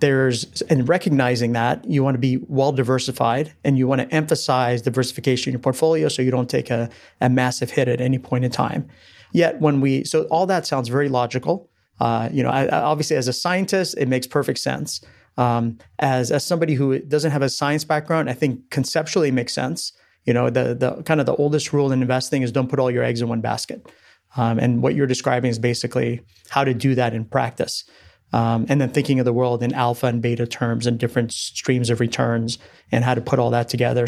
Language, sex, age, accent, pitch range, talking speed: English, male, 30-49, American, 120-145 Hz, 220 wpm